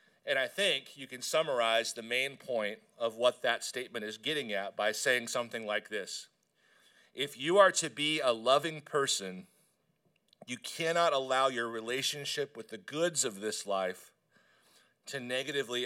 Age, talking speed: 40-59, 160 wpm